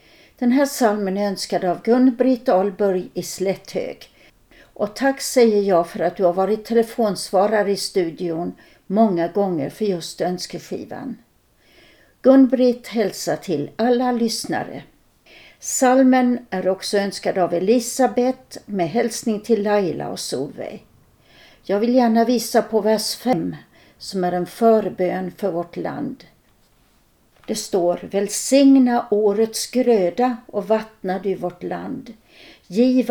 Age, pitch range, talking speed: 60-79, 185-240 Hz, 125 wpm